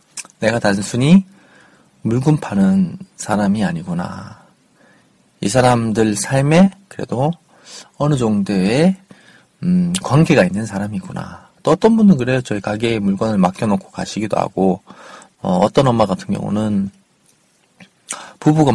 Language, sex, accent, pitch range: Korean, male, native, 100-165 Hz